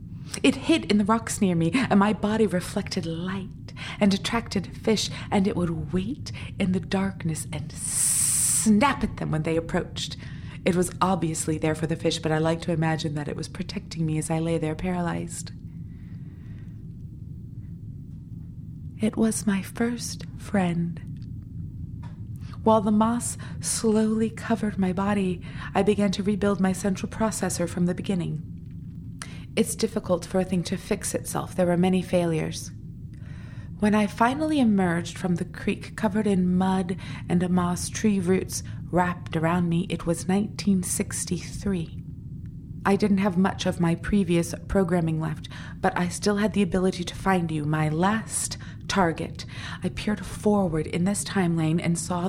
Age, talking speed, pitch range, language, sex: 30-49, 155 wpm, 165-205 Hz, English, female